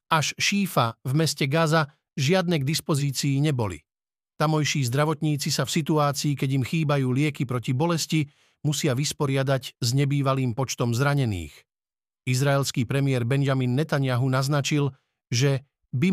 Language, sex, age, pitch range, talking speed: Slovak, male, 50-69, 130-155 Hz, 125 wpm